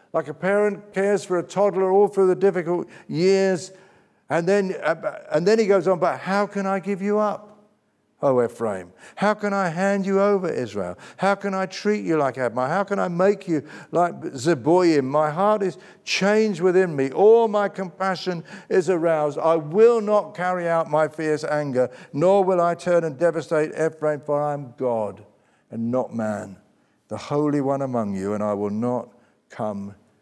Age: 60-79